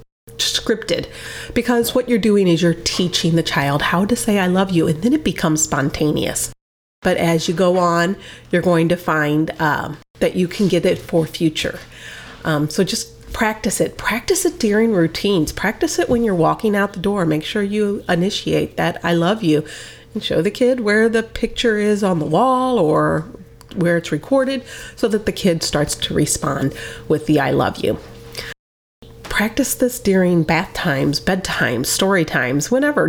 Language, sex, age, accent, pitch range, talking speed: English, female, 30-49, American, 165-225 Hz, 180 wpm